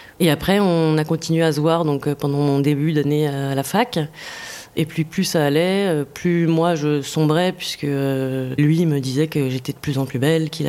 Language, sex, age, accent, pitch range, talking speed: French, female, 20-39, French, 150-175 Hz, 210 wpm